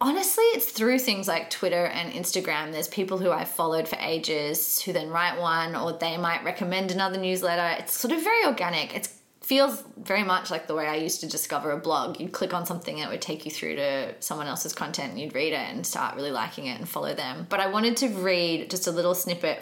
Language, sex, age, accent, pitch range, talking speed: English, female, 20-39, Australian, 160-195 Hz, 240 wpm